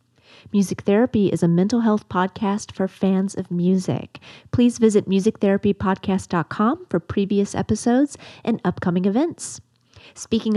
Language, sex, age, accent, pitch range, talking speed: English, female, 30-49, American, 180-215 Hz, 120 wpm